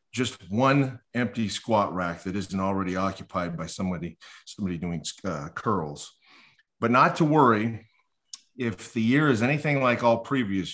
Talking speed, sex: 150 wpm, male